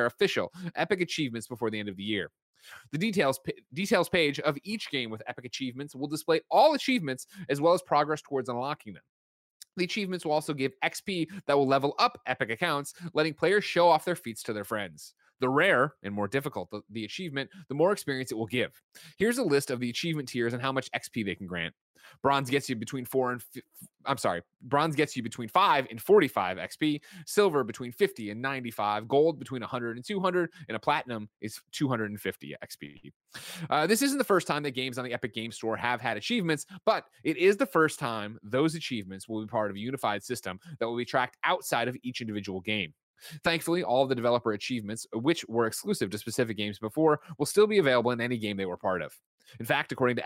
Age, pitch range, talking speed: 30-49, 110-155 Hz, 215 wpm